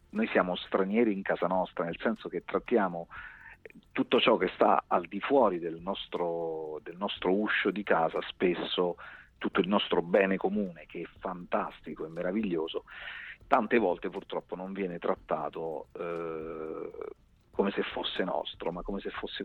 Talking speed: 150 wpm